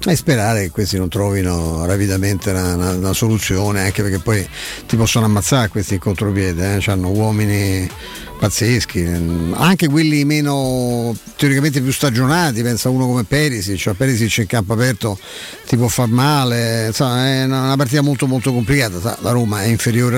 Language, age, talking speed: Italian, 50-69, 150 wpm